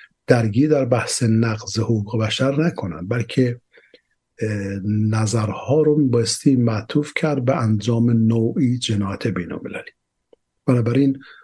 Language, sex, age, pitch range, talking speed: Persian, male, 50-69, 110-135 Hz, 100 wpm